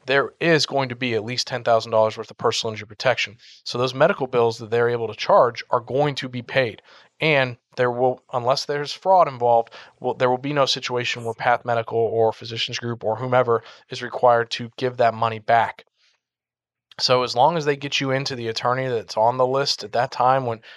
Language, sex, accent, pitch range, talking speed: English, male, American, 115-130 Hz, 210 wpm